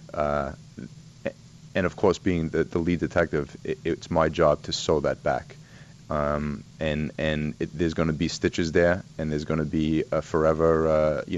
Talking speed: 190 wpm